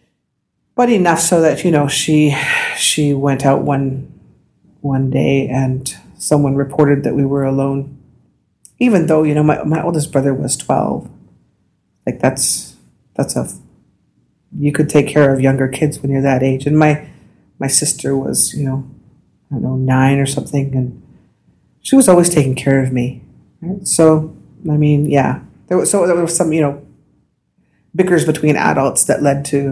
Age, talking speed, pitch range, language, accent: 40-59, 170 wpm, 135-155 Hz, English, American